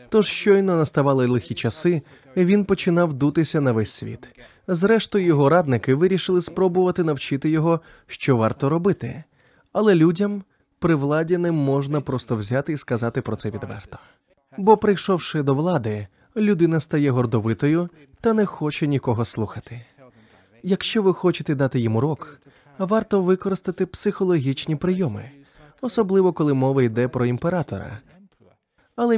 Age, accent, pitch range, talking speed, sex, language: 20-39, native, 120-180 Hz, 130 wpm, male, Ukrainian